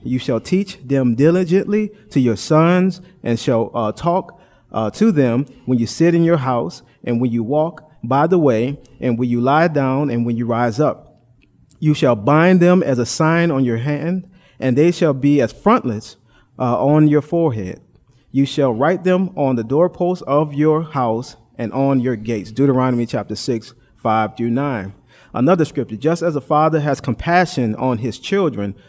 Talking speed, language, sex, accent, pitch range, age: 185 wpm, English, male, American, 120-150 Hz, 30-49